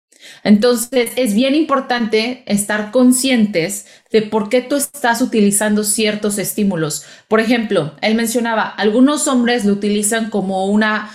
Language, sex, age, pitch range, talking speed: Spanish, female, 30-49, 210-250 Hz, 130 wpm